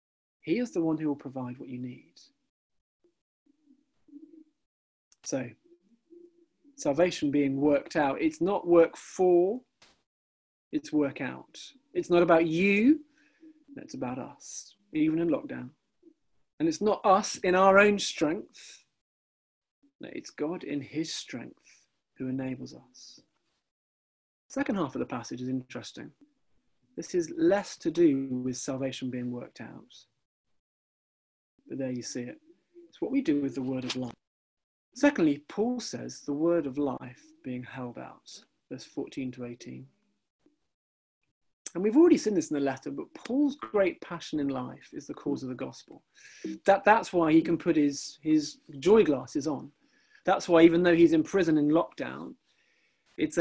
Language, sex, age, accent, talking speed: English, male, 40-59, British, 150 wpm